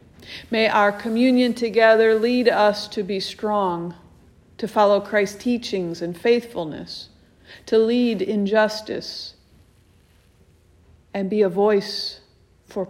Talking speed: 110 wpm